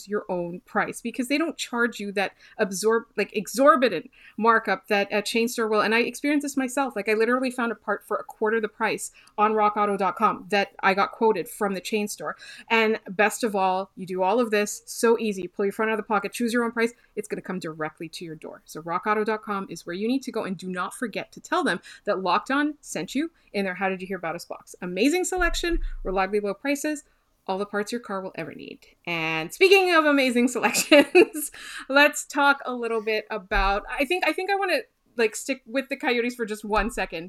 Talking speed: 230 wpm